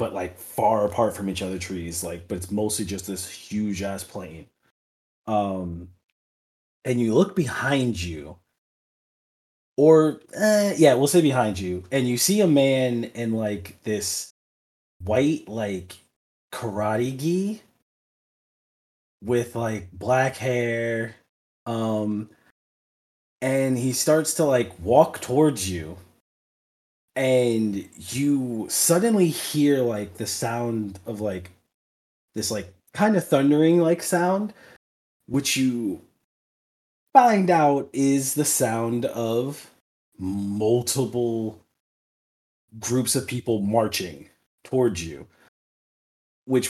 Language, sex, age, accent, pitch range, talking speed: English, male, 20-39, American, 95-135 Hz, 110 wpm